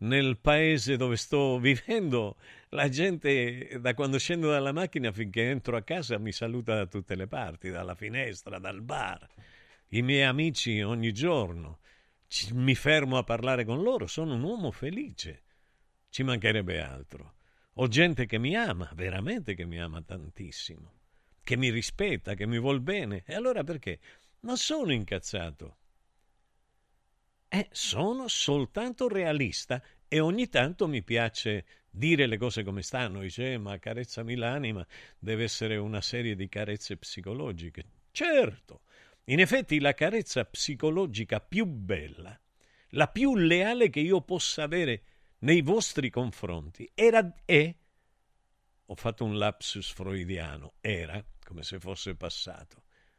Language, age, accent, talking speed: Italian, 50-69, native, 140 wpm